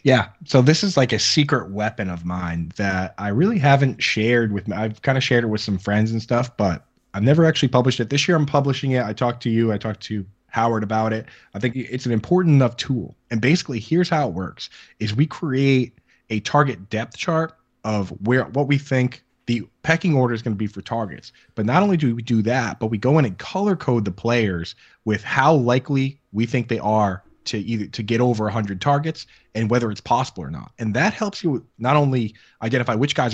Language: English